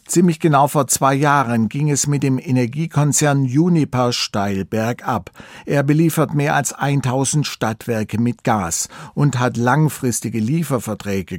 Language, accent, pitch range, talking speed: German, German, 120-150 Hz, 130 wpm